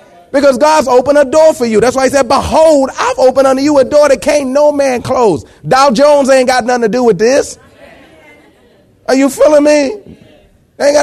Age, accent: 30-49, American